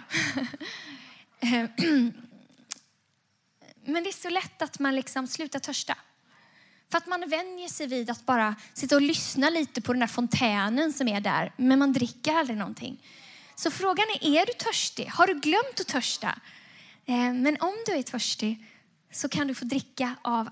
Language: Swedish